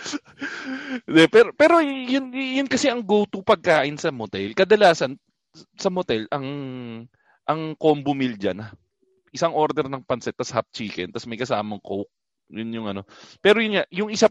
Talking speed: 155 wpm